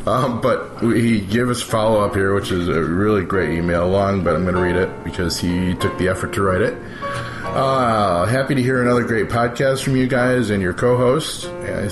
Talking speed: 210 wpm